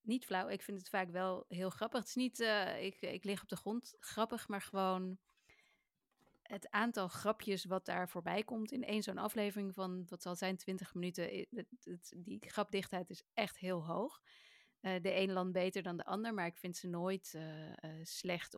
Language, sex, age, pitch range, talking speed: Dutch, female, 30-49, 180-225 Hz, 205 wpm